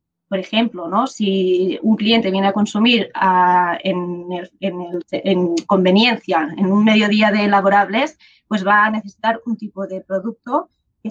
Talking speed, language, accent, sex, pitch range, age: 160 wpm, Spanish, Spanish, female, 195-230 Hz, 20-39